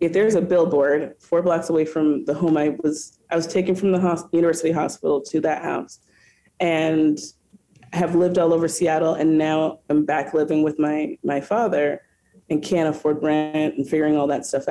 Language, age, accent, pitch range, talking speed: English, 30-49, American, 145-180 Hz, 190 wpm